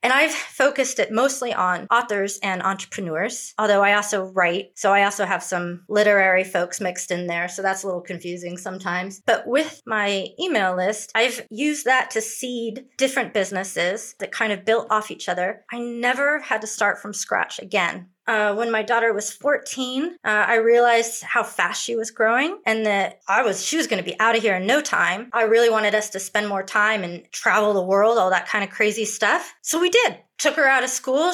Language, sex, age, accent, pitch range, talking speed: English, female, 30-49, American, 190-240 Hz, 215 wpm